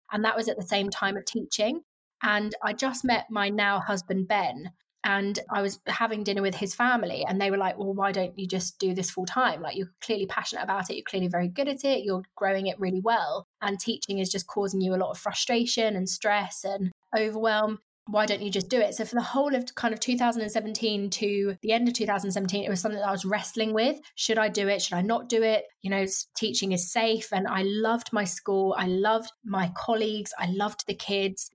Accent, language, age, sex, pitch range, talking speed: British, English, 20-39, female, 195-225 Hz, 235 wpm